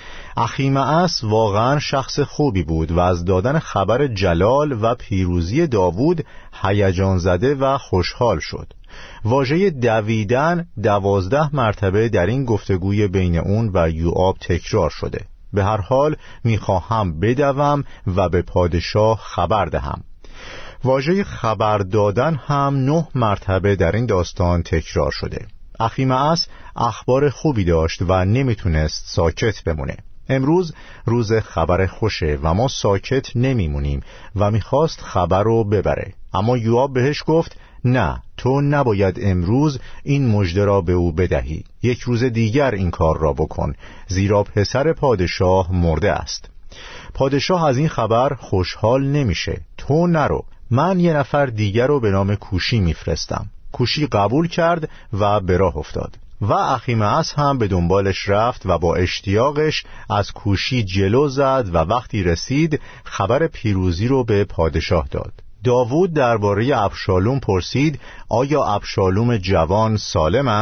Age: 50-69